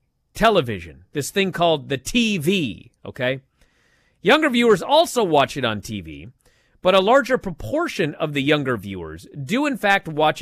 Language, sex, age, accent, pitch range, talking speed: English, male, 30-49, American, 120-175 Hz, 150 wpm